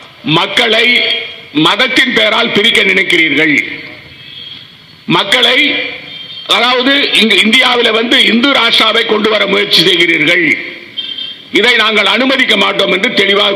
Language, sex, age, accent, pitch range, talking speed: Tamil, male, 50-69, native, 200-255 Hz, 90 wpm